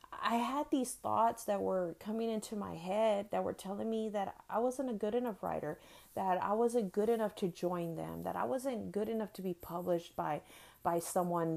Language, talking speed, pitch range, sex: English, 205 wpm, 175-230 Hz, female